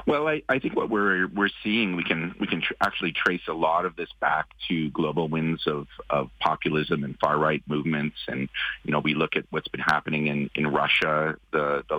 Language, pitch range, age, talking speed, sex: English, 70-80 Hz, 40-59, 220 wpm, male